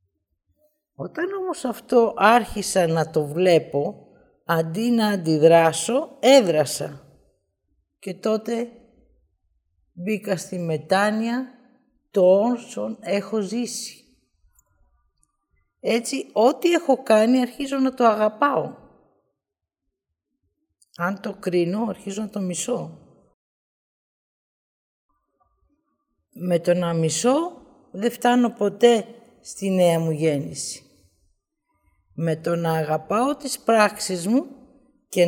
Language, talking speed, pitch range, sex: Greek, 90 wpm, 165-235 Hz, female